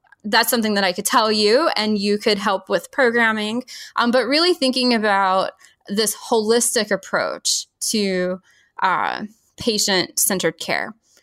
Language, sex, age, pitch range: English, female, 10-29, 200-250 Hz